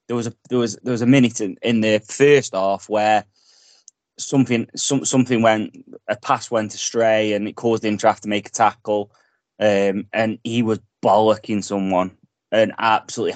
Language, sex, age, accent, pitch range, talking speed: English, male, 20-39, British, 105-125 Hz, 180 wpm